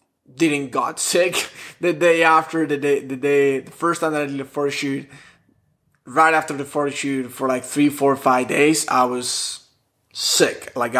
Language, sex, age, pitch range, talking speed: English, male, 20-39, 130-155 Hz, 185 wpm